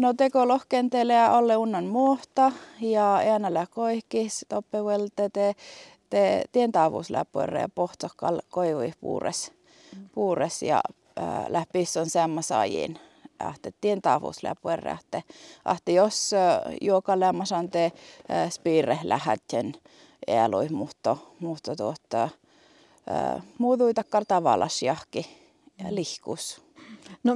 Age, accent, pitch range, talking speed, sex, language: 30-49, native, 185-255 Hz, 85 wpm, female, Finnish